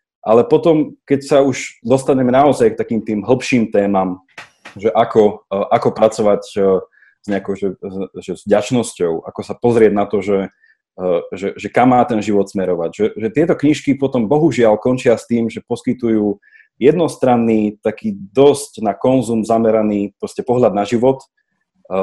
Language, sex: Slovak, male